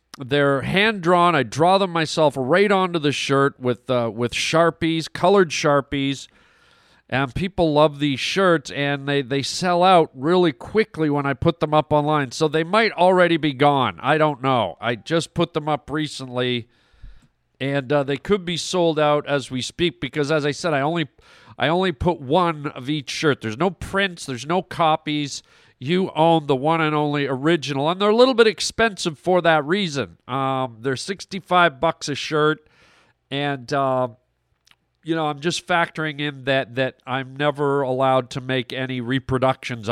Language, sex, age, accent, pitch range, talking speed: English, male, 40-59, American, 130-165 Hz, 175 wpm